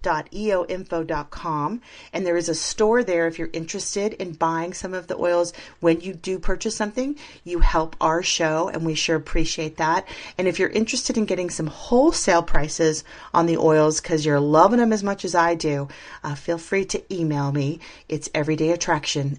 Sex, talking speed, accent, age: female, 185 wpm, American, 30-49